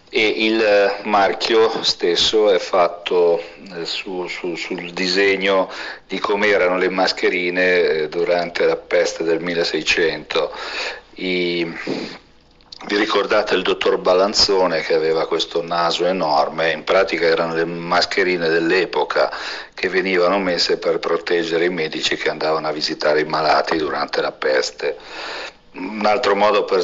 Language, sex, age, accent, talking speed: Italian, male, 50-69, native, 120 wpm